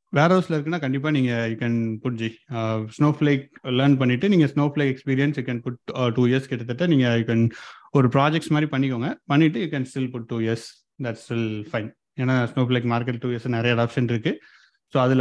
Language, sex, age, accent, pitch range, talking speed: Tamil, male, 30-49, native, 120-145 Hz, 190 wpm